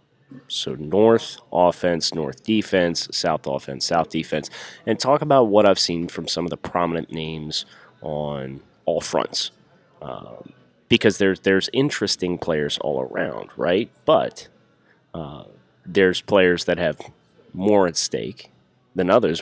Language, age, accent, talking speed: English, 30-49, American, 135 wpm